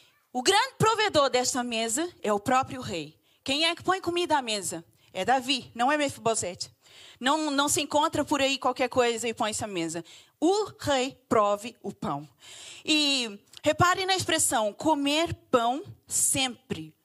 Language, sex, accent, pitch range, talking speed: Portuguese, female, Brazilian, 245-340 Hz, 160 wpm